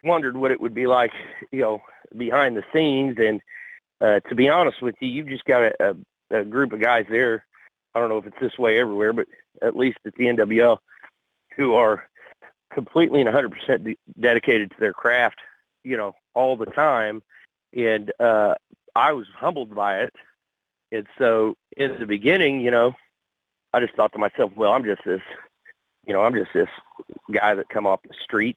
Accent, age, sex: American, 40-59, male